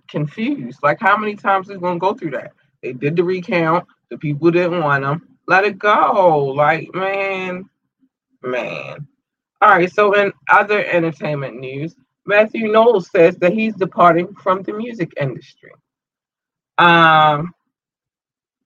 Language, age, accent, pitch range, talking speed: English, 20-39, American, 145-185 Hz, 140 wpm